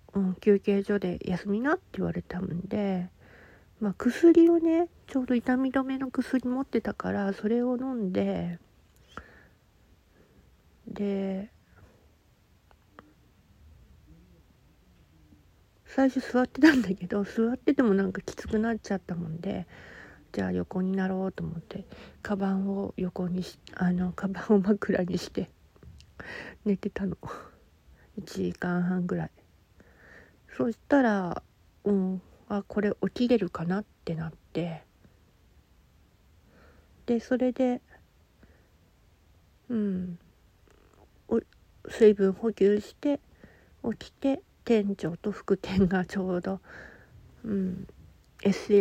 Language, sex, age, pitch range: Japanese, female, 50-69, 155-220 Hz